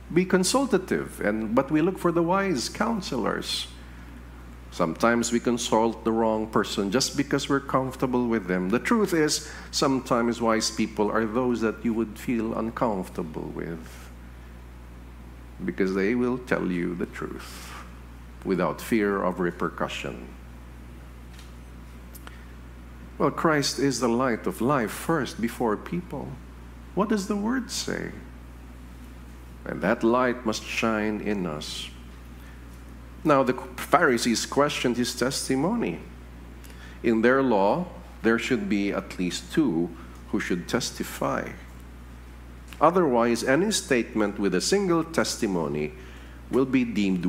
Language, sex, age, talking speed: English, male, 50-69, 125 wpm